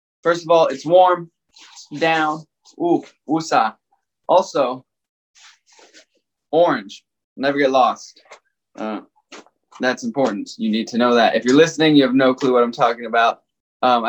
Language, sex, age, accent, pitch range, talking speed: English, male, 20-39, American, 130-170 Hz, 140 wpm